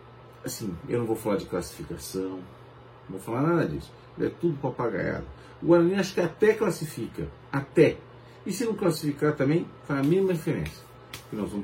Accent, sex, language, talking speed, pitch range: Brazilian, male, Portuguese, 175 wpm, 120-155 Hz